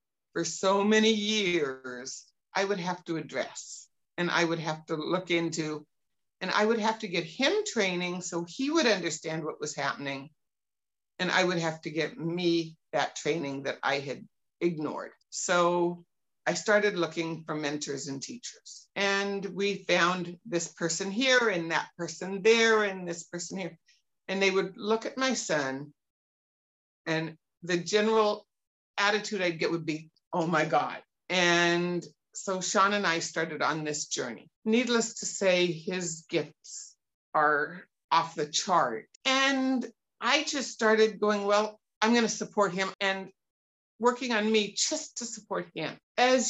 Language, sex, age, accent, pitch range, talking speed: English, female, 60-79, American, 160-210 Hz, 155 wpm